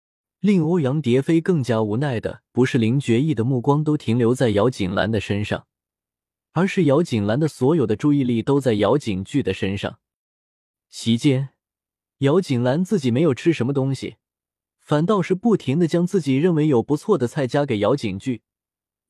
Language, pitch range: Chinese, 115-160 Hz